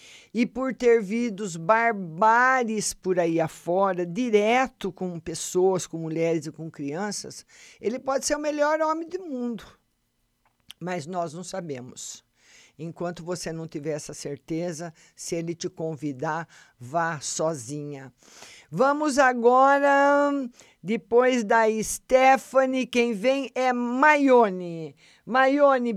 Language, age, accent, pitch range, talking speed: Portuguese, 50-69, Brazilian, 175-240 Hz, 115 wpm